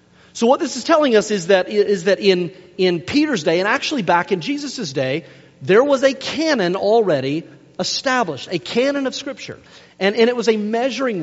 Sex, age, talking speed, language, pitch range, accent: male, 40-59, 190 wpm, English, 155-230 Hz, American